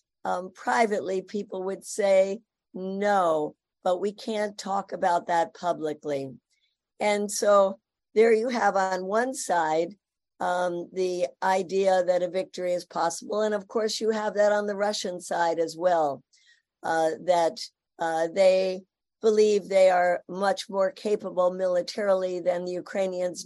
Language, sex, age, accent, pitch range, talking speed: English, female, 50-69, American, 175-205 Hz, 140 wpm